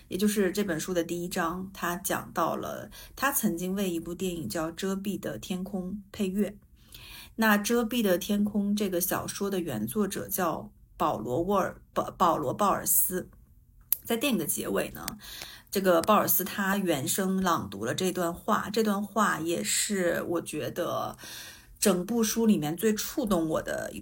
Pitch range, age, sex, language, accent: 175-205 Hz, 50-69, female, Chinese, native